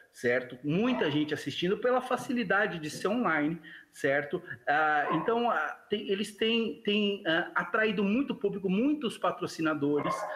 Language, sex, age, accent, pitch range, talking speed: Portuguese, male, 40-59, Brazilian, 150-220 Hz, 110 wpm